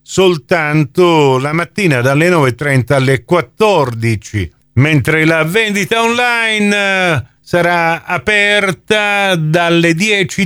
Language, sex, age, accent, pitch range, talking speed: Italian, male, 50-69, native, 130-180 Hz, 85 wpm